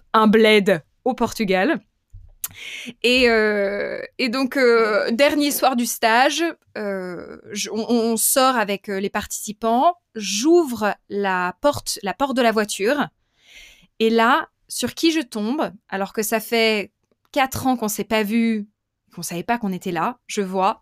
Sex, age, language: female, 20-39, French